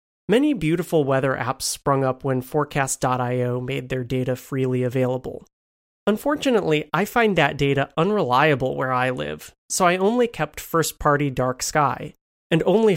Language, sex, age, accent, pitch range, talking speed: English, male, 30-49, American, 130-170 Hz, 145 wpm